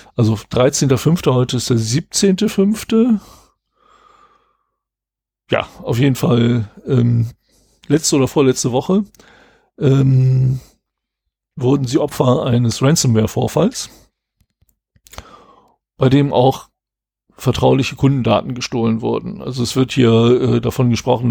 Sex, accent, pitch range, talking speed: male, German, 115-135 Hz, 100 wpm